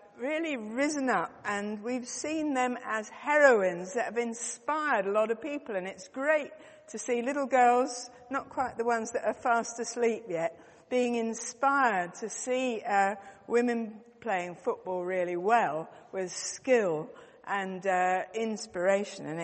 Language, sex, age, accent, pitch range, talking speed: English, female, 50-69, British, 200-265 Hz, 150 wpm